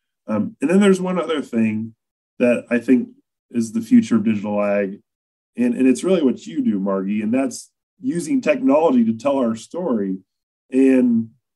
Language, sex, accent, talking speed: English, male, American, 170 wpm